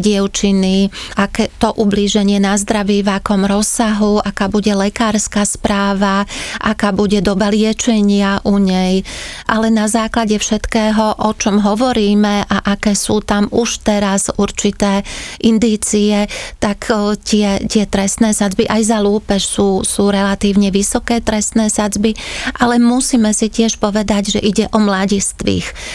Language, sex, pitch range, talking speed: Slovak, female, 195-215 Hz, 130 wpm